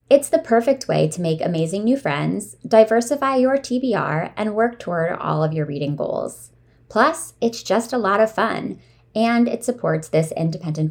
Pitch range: 160-230 Hz